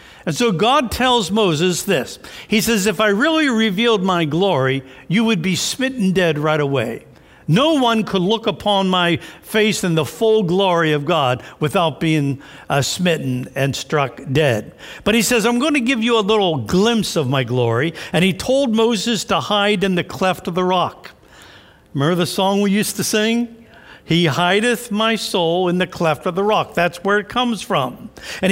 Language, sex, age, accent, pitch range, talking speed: English, male, 60-79, American, 175-230 Hz, 190 wpm